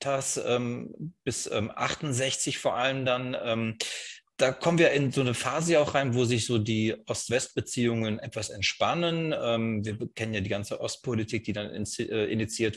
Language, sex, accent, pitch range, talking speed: German, male, German, 110-130 Hz, 140 wpm